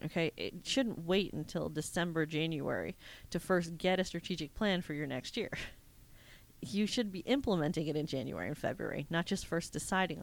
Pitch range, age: 155-190 Hz, 40-59